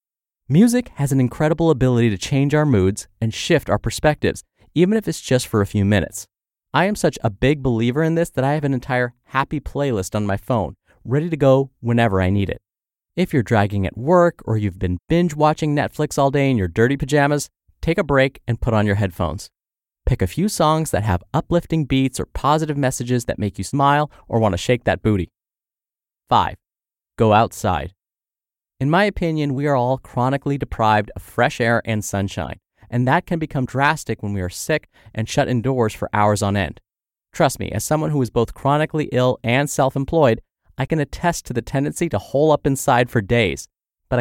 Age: 30-49